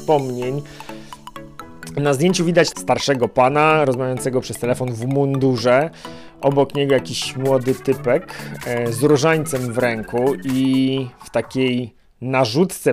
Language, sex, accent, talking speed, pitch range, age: Polish, male, native, 115 wpm, 125-150 Hz, 30-49